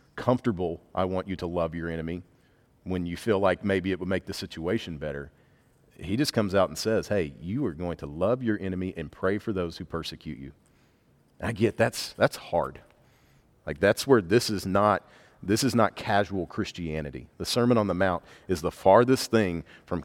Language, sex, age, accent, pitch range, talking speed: English, male, 40-59, American, 85-110 Hz, 200 wpm